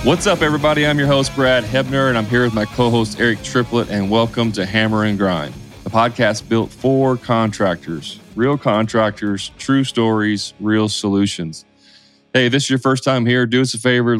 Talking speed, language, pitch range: 190 wpm, English, 100-120 Hz